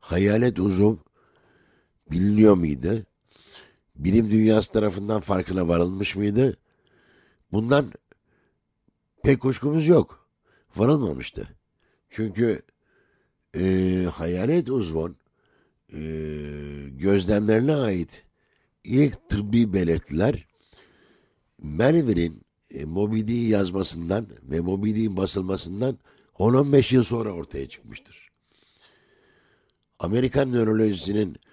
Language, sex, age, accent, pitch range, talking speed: Turkish, male, 60-79, native, 90-115 Hz, 75 wpm